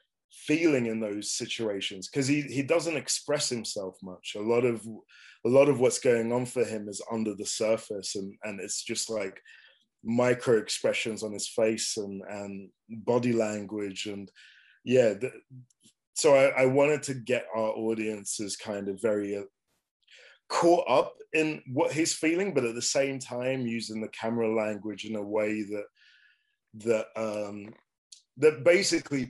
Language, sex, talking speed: English, male, 155 wpm